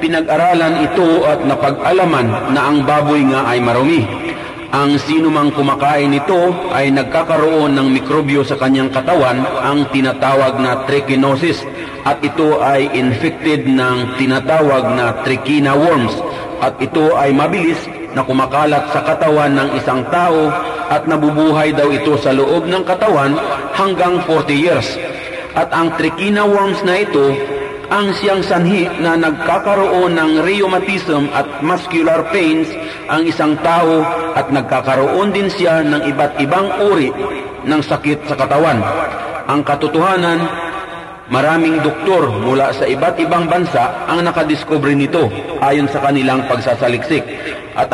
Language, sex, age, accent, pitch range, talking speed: Filipino, male, 40-59, native, 140-170 Hz, 130 wpm